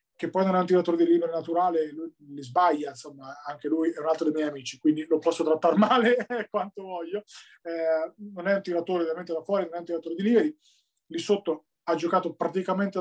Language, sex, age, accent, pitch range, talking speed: Italian, male, 20-39, native, 165-195 Hz, 215 wpm